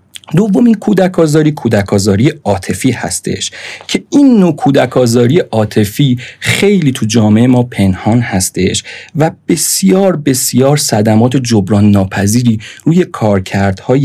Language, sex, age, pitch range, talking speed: Persian, male, 40-59, 105-140 Hz, 115 wpm